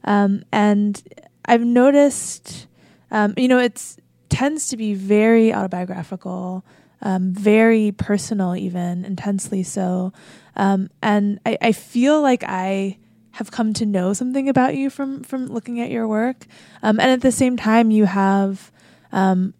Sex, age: female, 20-39